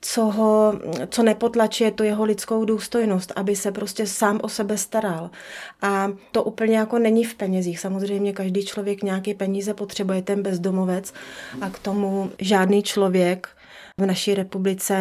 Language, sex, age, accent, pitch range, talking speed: Czech, female, 30-49, native, 185-210 Hz, 150 wpm